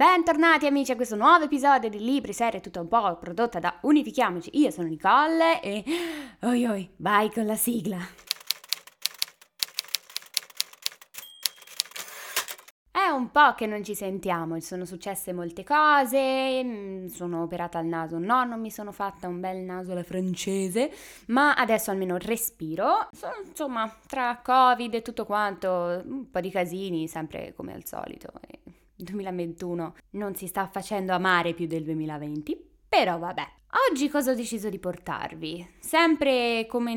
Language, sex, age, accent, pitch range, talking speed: Italian, female, 10-29, native, 180-245 Hz, 145 wpm